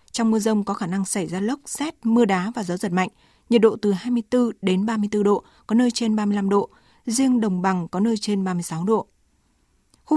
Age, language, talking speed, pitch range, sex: 20-39, Vietnamese, 220 wpm, 195-235 Hz, female